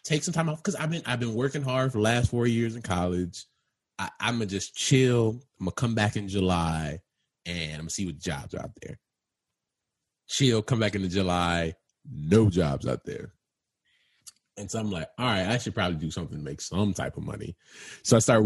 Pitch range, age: 85-110 Hz, 20-39